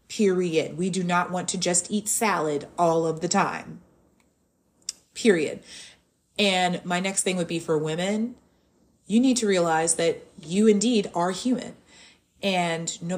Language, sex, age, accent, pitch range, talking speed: English, female, 30-49, American, 165-205 Hz, 150 wpm